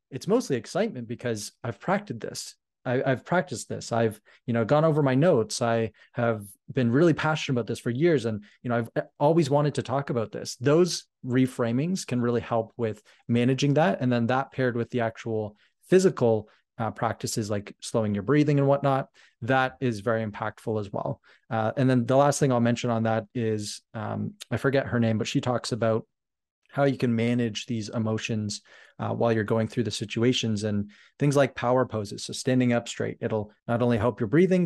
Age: 20-39